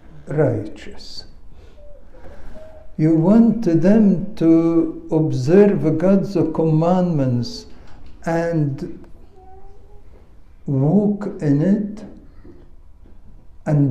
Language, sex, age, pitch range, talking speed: English, male, 60-79, 125-175 Hz, 55 wpm